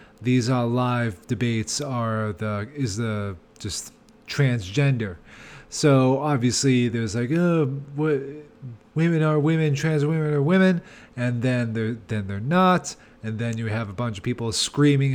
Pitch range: 120-145 Hz